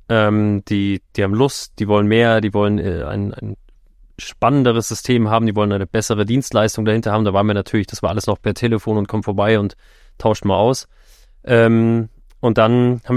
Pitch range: 105-120 Hz